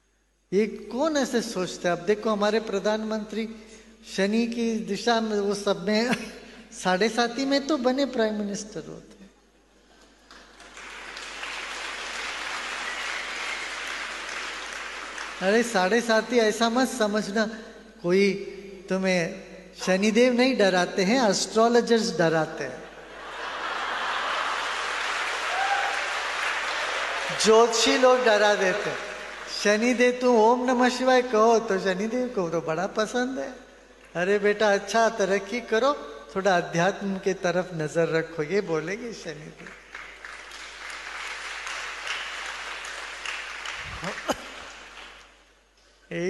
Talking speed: 95 wpm